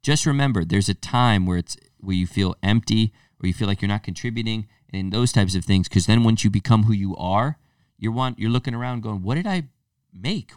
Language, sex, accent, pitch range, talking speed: English, male, American, 95-125 Hz, 235 wpm